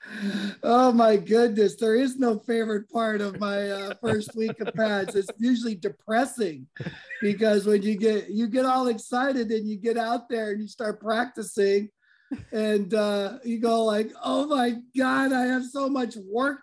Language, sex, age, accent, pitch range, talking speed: English, male, 50-69, American, 200-240 Hz, 175 wpm